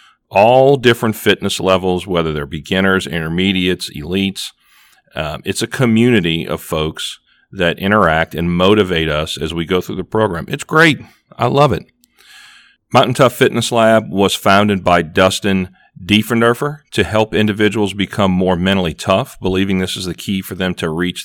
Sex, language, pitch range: male, English, 95-110 Hz